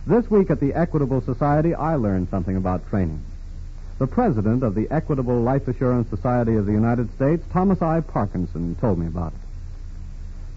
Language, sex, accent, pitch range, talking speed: English, male, American, 95-155 Hz, 170 wpm